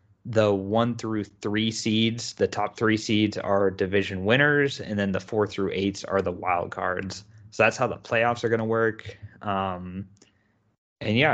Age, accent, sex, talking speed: 20-39, American, male, 175 wpm